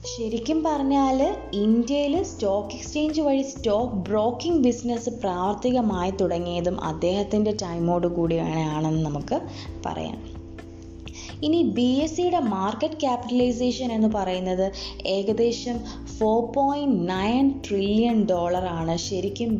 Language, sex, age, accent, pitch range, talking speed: Malayalam, female, 20-39, native, 180-240 Hz, 85 wpm